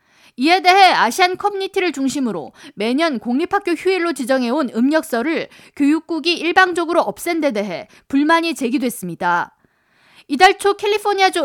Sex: female